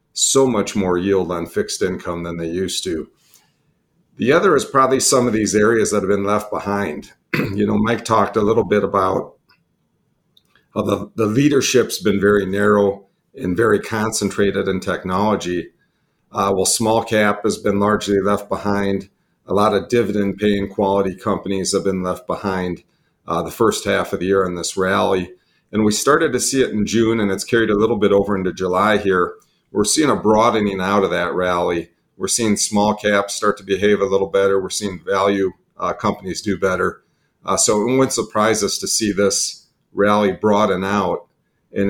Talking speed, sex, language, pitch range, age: 185 wpm, male, English, 95-105 Hz, 50-69